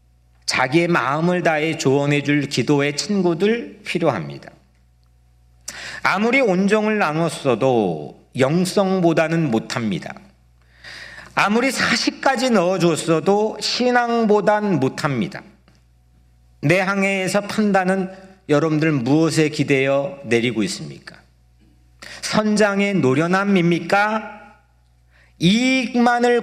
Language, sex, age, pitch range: Korean, male, 40-59, 135-210 Hz